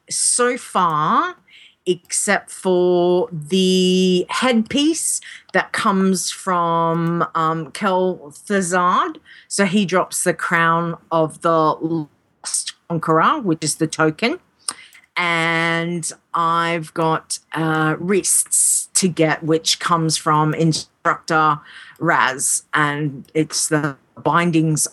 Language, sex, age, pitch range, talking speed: English, female, 50-69, 160-200 Hz, 95 wpm